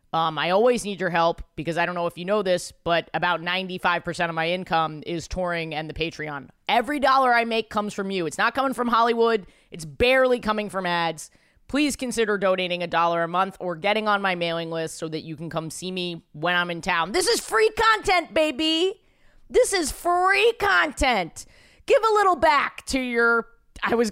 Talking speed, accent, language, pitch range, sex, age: 205 wpm, American, English, 175-255 Hz, female, 20-39